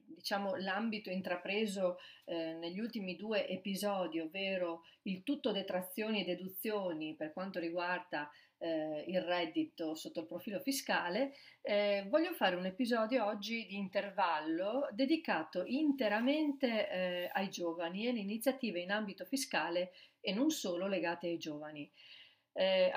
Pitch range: 175-240 Hz